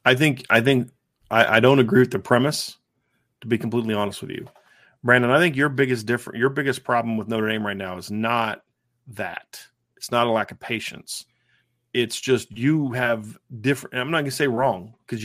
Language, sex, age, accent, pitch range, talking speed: English, male, 40-59, American, 115-130 Hz, 205 wpm